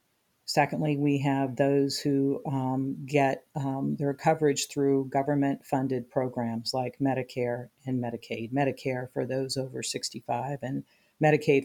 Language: English